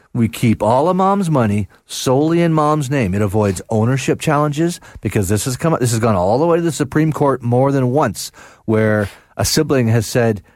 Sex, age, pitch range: male, 40-59, 110-140 Hz